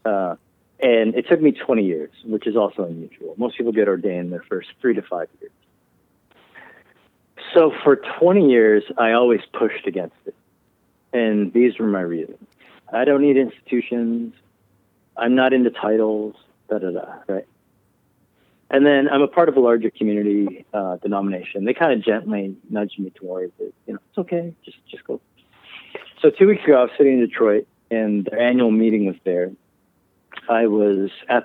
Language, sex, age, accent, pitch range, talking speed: English, male, 40-59, American, 105-140 Hz, 170 wpm